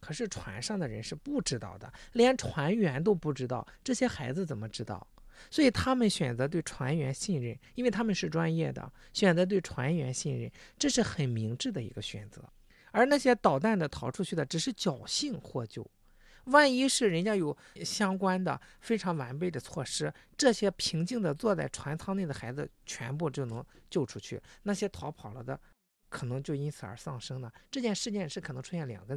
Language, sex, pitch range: Chinese, male, 140-235 Hz